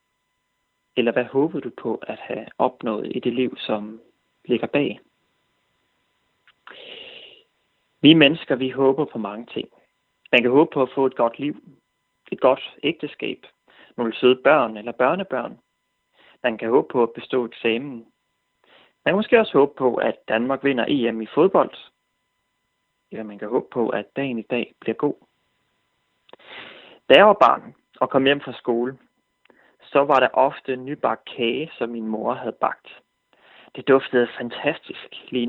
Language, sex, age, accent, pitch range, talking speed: Danish, male, 30-49, native, 120-140 Hz, 155 wpm